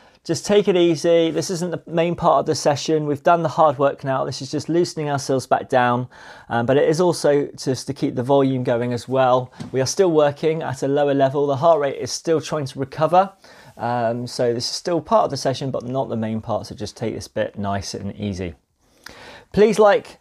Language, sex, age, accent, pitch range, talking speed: English, male, 30-49, British, 130-165 Hz, 230 wpm